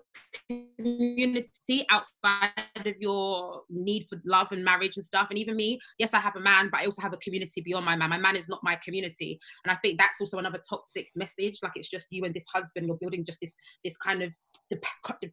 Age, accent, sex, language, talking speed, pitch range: 20-39, British, female, English, 225 wpm, 185-220 Hz